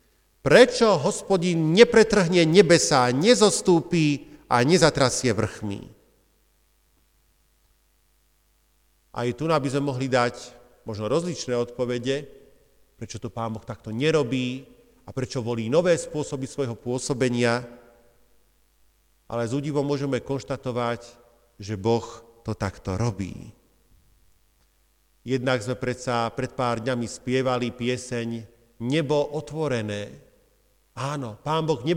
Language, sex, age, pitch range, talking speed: Slovak, male, 50-69, 120-180 Hz, 100 wpm